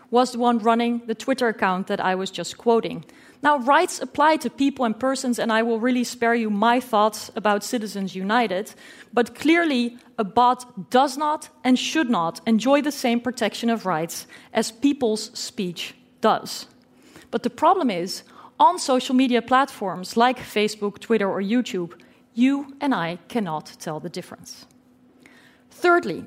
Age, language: 30-49, English